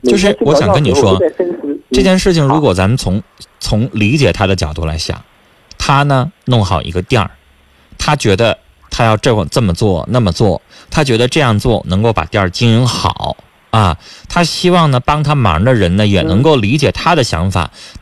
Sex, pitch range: male, 95-150 Hz